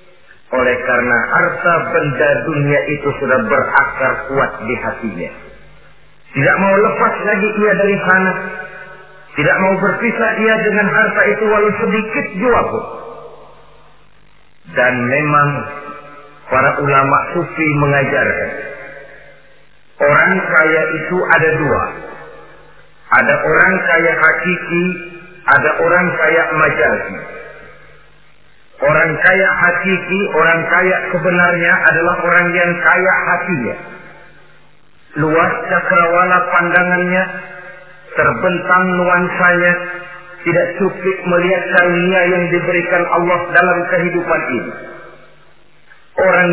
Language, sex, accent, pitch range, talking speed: Indonesian, male, native, 170-205 Hz, 95 wpm